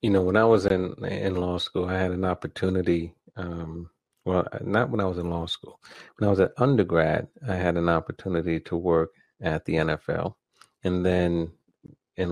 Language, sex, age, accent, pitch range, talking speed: English, male, 30-49, American, 85-95 Hz, 190 wpm